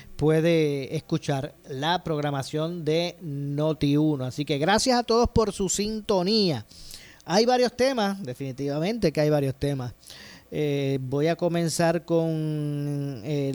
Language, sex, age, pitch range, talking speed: Spanish, male, 30-49, 140-170 Hz, 125 wpm